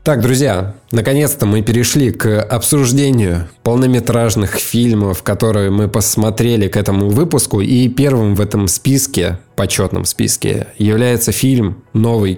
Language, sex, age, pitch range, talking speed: Russian, male, 20-39, 100-125 Hz, 120 wpm